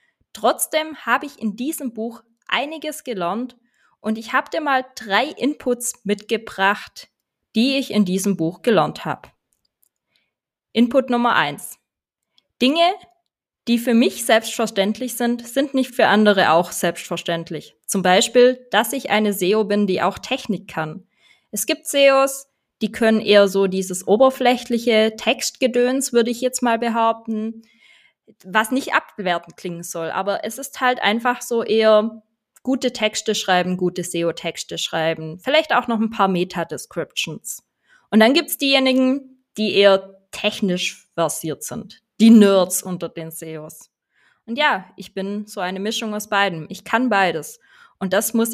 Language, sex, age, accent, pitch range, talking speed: German, female, 20-39, German, 190-250 Hz, 145 wpm